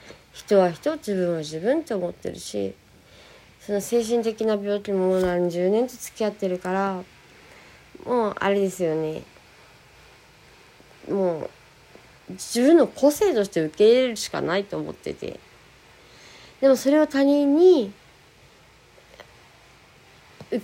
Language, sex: Japanese, female